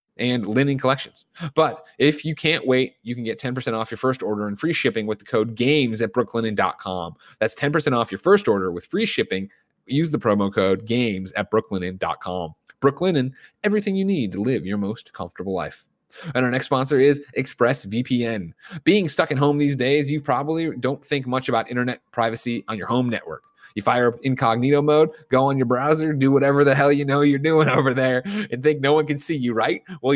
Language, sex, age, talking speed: English, male, 30-49, 205 wpm